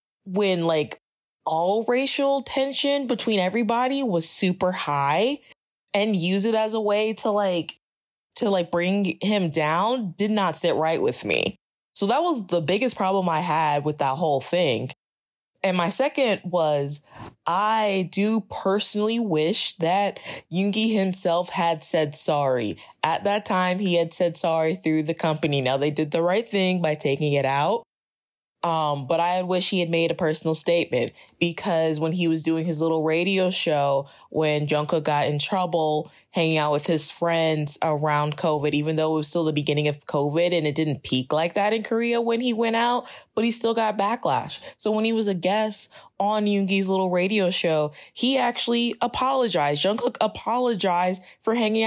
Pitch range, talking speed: 160-220 Hz, 175 wpm